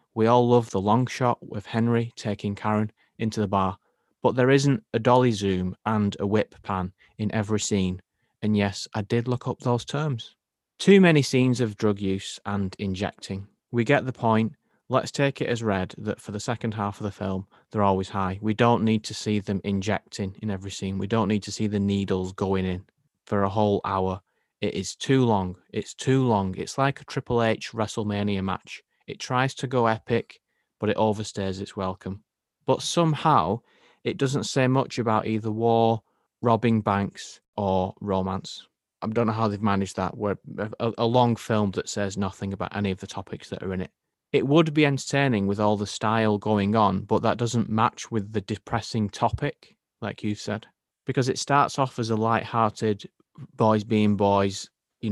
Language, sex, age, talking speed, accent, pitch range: English, male, 30-49, 195 wpm, British, 100-120 Hz